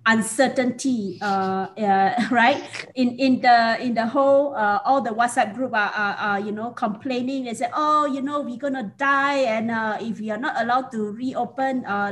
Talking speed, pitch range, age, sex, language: 195 wpm, 195-250 Hz, 20-39, female, Malay